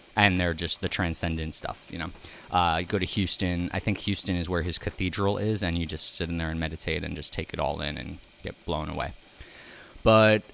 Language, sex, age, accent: English, male, 20-39, American